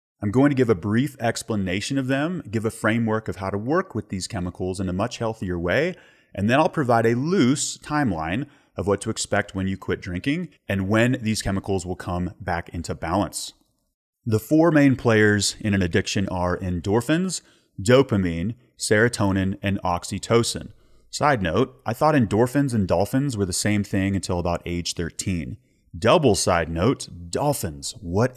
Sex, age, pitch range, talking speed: male, 30-49, 95-125 Hz, 170 wpm